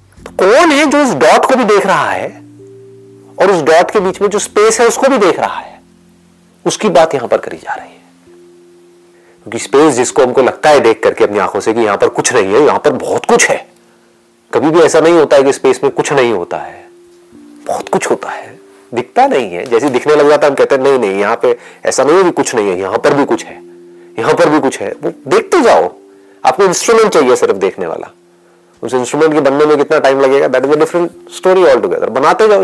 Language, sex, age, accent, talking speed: Hindi, male, 40-59, native, 230 wpm